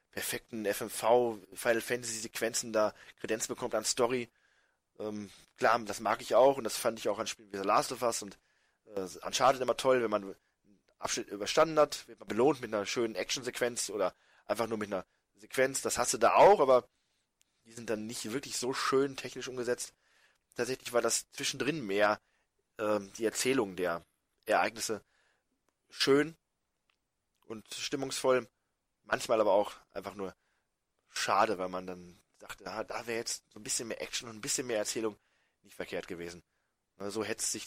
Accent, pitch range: German, 100-125 Hz